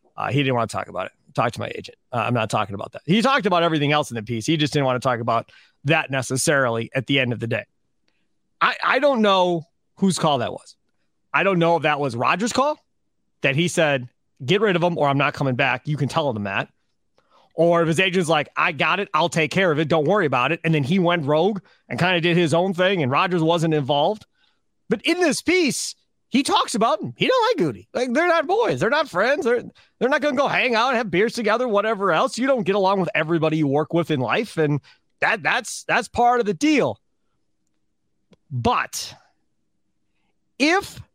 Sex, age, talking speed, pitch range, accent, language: male, 30-49, 235 wpm, 145-210 Hz, American, English